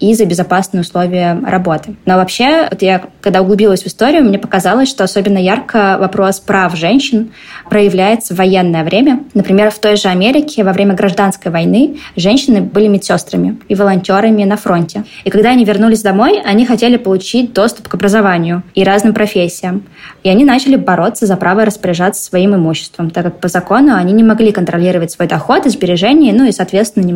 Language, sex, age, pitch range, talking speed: Russian, female, 20-39, 185-220 Hz, 175 wpm